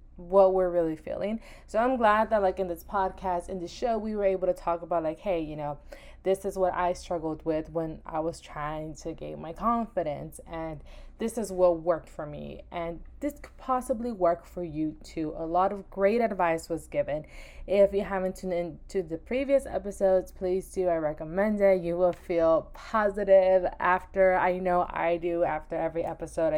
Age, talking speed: 20-39, 195 wpm